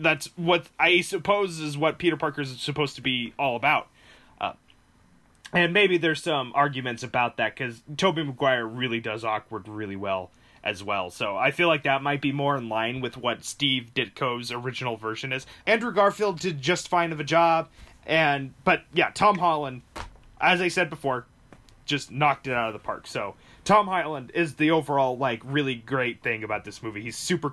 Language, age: English, 20-39